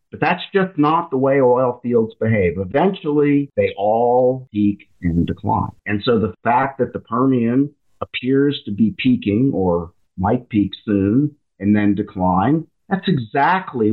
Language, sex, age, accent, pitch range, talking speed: English, male, 50-69, American, 100-140 Hz, 150 wpm